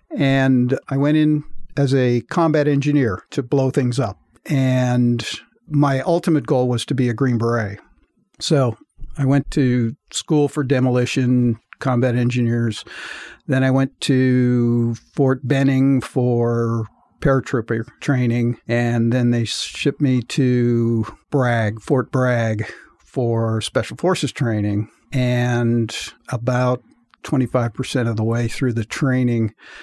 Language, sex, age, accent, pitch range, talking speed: English, male, 50-69, American, 120-145 Hz, 125 wpm